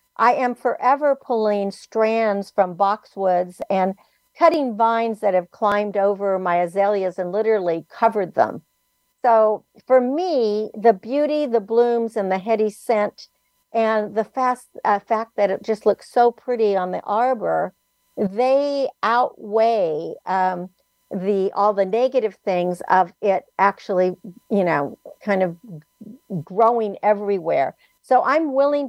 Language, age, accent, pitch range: English, 50-69, American, 200-245 Hz